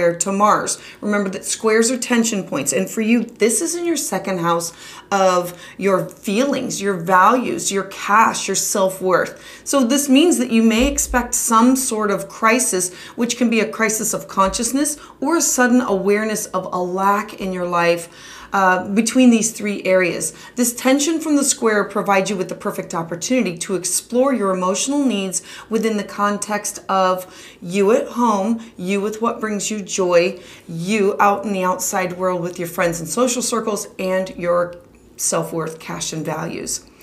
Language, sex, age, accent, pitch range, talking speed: English, female, 30-49, American, 185-240 Hz, 170 wpm